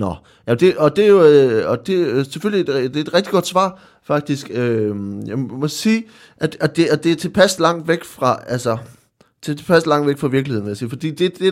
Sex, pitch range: male, 125-165 Hz